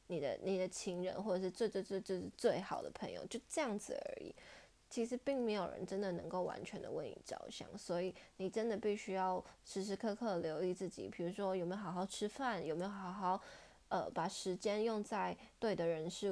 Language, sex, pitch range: Chinese, female, 185-225 Hz